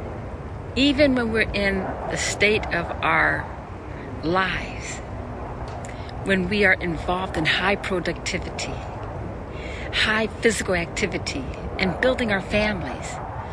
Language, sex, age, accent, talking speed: English, female, 50-69, American, 100 wpm